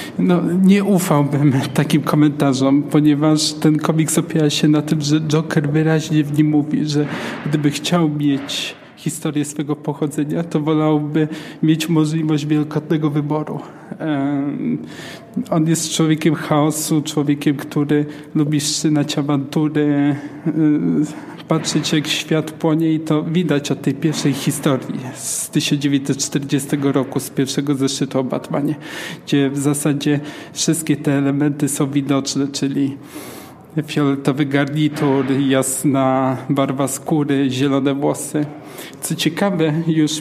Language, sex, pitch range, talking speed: Polish, male, 145-165 Hz, 115 wpm